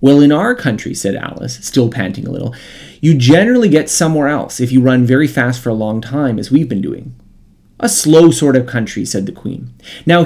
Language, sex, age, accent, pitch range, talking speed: English, male, 30-49, American, 115-160 Hz, 215 wpm